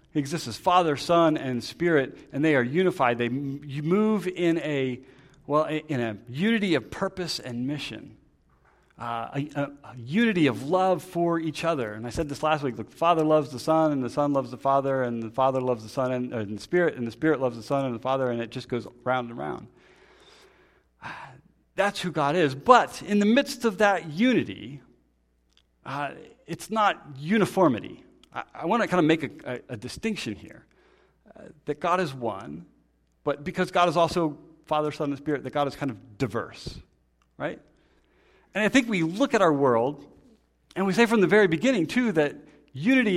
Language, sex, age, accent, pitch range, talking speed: English, male, 40-59, American, 120-175 Hz, 195 wpm